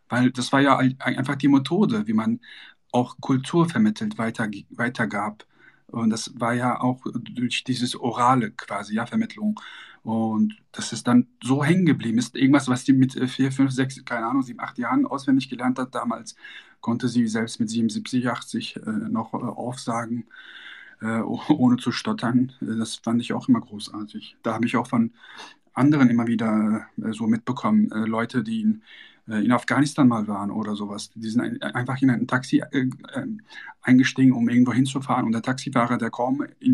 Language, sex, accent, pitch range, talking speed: German, male, German, 120-165 Hz, 165 wpm